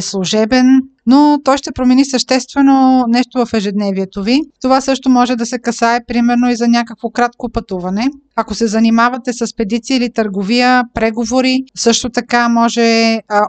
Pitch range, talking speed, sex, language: 225-265 Hz, 150 wpm, female, Bulgarian